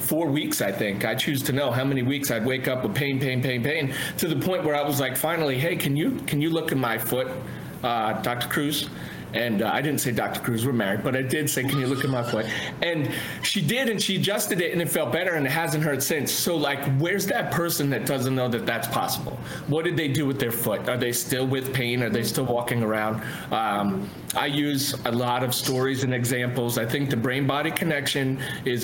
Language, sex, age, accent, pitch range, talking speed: English, male, 40-59, American, 120-145 Hz, 245 wpm